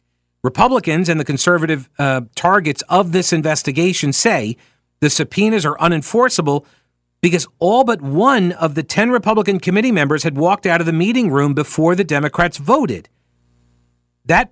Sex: male